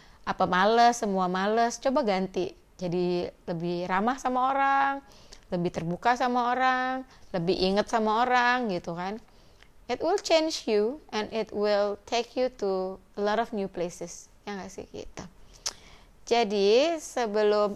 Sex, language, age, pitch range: female, Indonesian, 30-49, 180-235 Hz